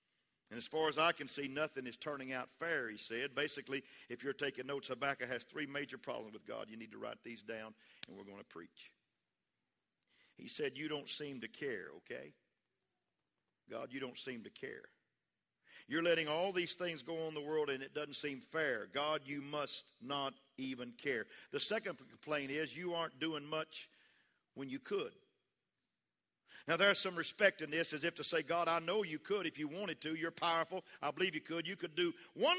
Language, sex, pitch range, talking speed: English, male, 135-180 Hz, 205 wpm